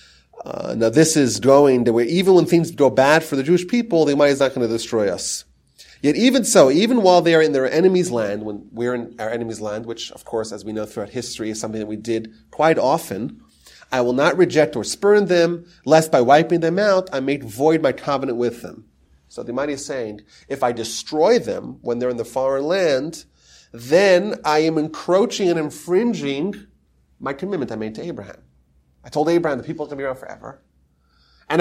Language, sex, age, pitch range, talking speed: English, male, 30-49, 110-160 Hz, 215 wpm